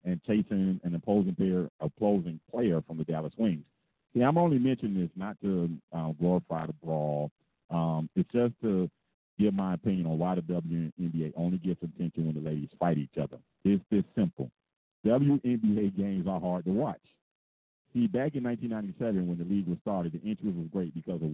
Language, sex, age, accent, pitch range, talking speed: English, male, 50-69, American, 80-95 Hz, 185 wpm